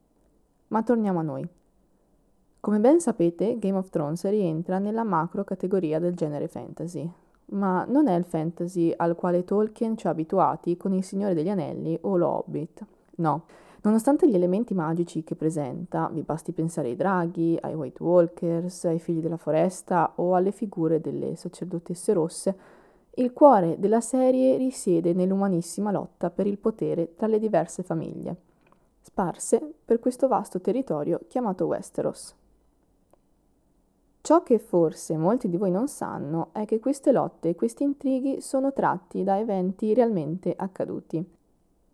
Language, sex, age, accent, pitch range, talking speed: Italian, female, 20-39, native, 170-225 Hz, 145 wpm